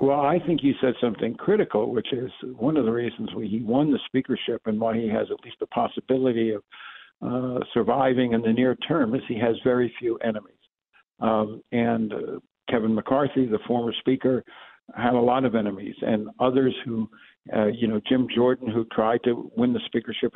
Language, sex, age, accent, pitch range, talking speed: English, male, 60-79, American, 110-130 Hz, 195 wpm